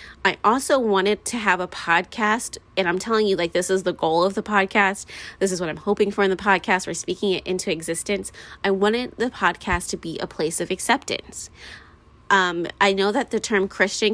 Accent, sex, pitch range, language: American, female, 185-215 Hz, English